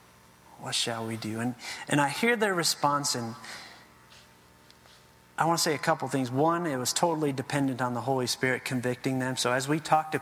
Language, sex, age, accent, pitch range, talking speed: English, male, 30-49, American, 130-175 Hz, 205 wpm